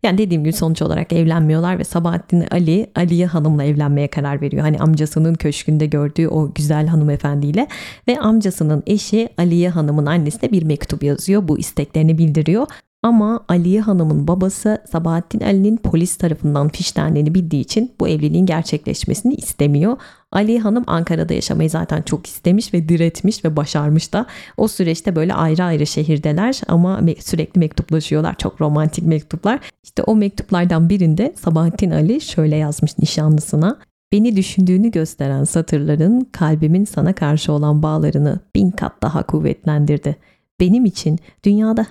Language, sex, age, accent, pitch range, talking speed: Turkish, female, 30-49, native, 155-200 Hz, 140 wpm